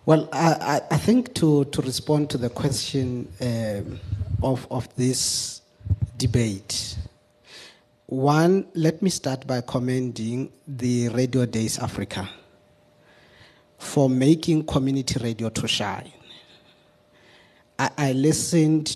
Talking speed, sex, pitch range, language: 110 wpm, male, 120-150 Hz, English